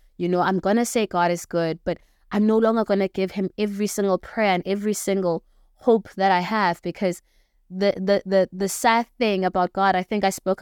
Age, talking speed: 20-39, 215 wpm